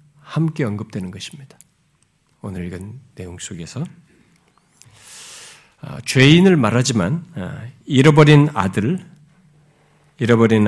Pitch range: 110-155 Hz